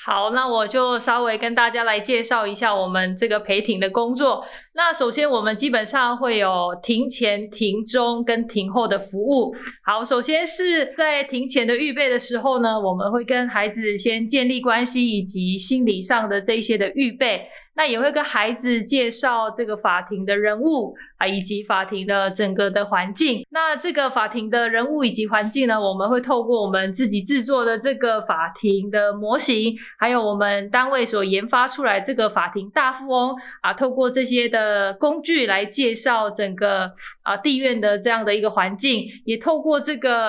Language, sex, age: Chinese, female, 20-39